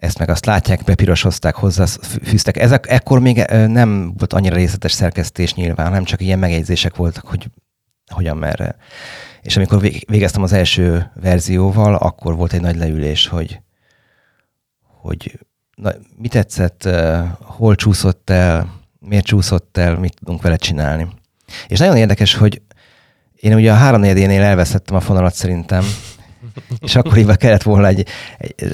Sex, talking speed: male, 145 wpm